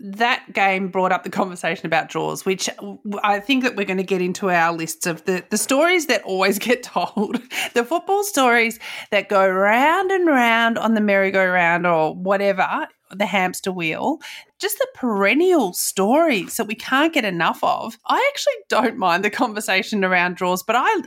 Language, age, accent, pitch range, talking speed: English, 30-49, Australian, 185-235 Hz, 180 wpm